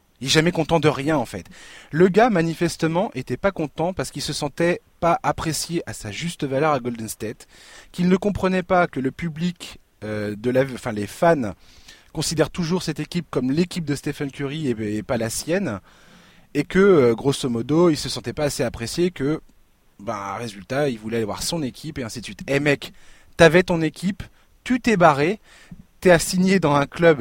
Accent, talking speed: French, 210 wpm